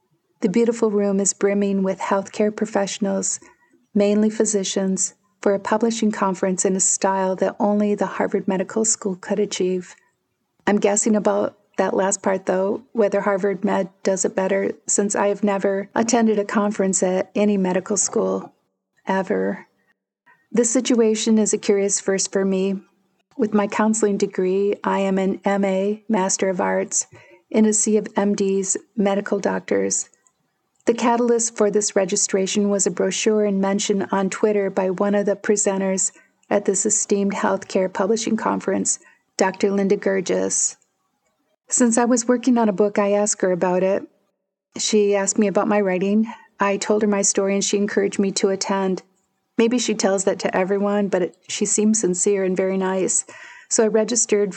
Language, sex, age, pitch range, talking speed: English, female, 50-69, 195-215 Hz, 160 wpm